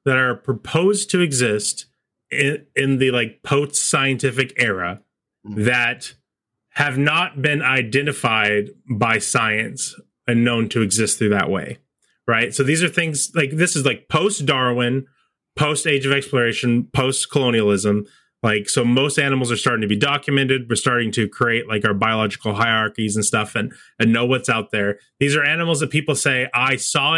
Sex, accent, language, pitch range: male, American, English, 115-140 Hz